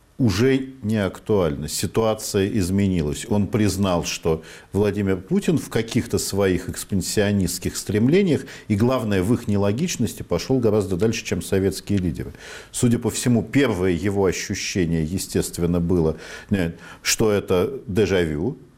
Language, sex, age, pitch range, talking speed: Russian, male, 50-69, 95-125 Hz, 120 wpm